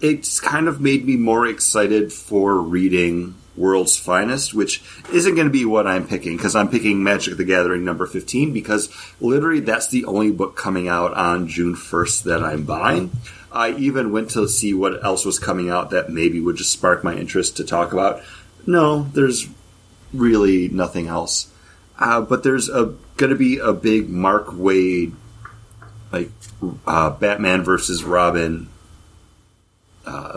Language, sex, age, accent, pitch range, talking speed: English, male, 30-49, American, 90-110 Hz, 160 wpm